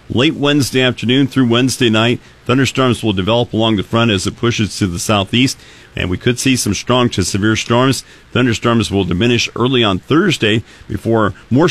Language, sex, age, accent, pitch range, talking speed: English, male, 50-69, American, 100-125 Hz, 180 wpm